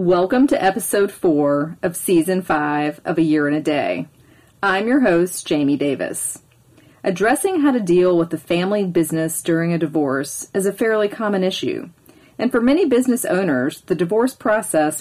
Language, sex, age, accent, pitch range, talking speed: English, female, 40-59, American, 160-215 Hz, 170 wpm